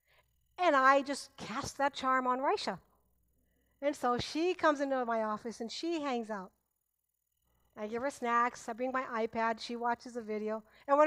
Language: English